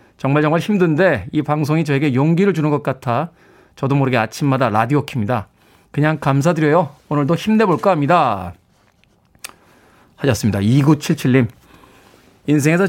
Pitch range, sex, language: 130-190 Hz, male, Korean